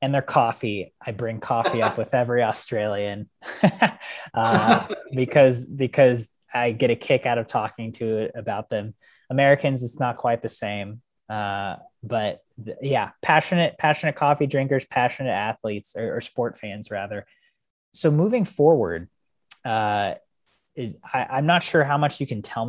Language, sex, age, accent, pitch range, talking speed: English, male, 20-39, American, 105-140 Hz, 150 wpm